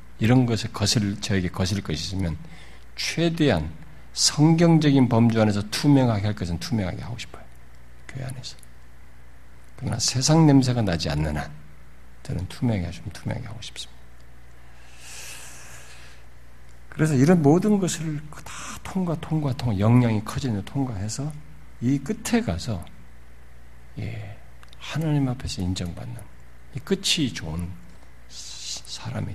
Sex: male